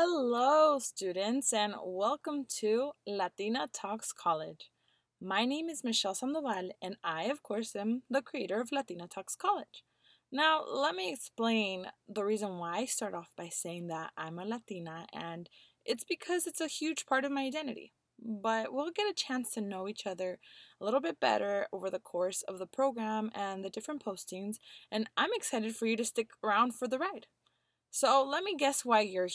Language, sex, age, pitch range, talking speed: English, female, 20-39, 190-270 Hz, 185 wpm